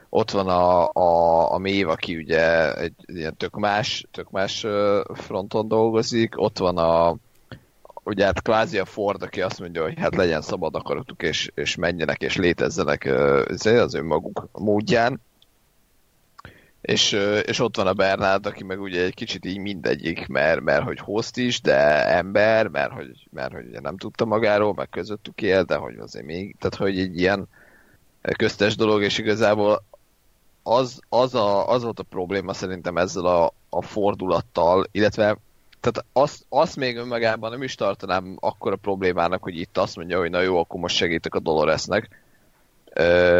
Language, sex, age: Hungarian, male, 30-49